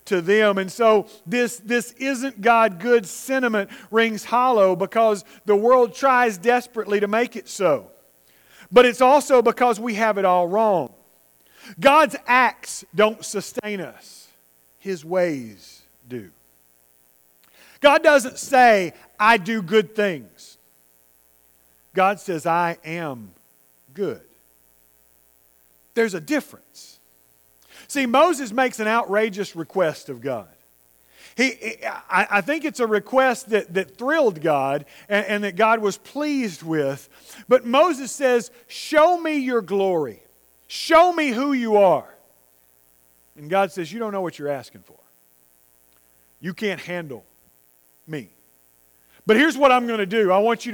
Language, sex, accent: English, male, American